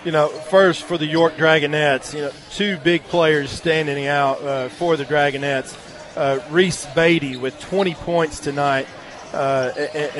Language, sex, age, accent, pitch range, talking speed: English, male, 40-59, American, 145-175 Hz, 155 wpm